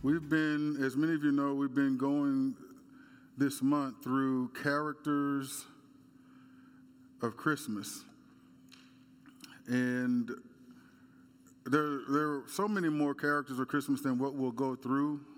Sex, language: male, English